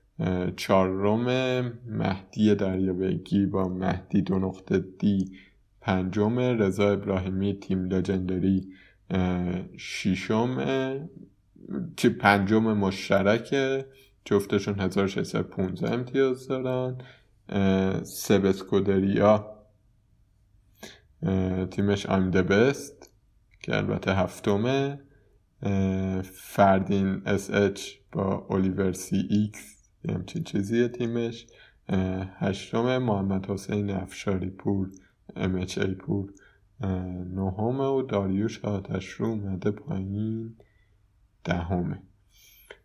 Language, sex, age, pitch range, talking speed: Persian, male, 20-39, 95-110 Hz, 70 wpm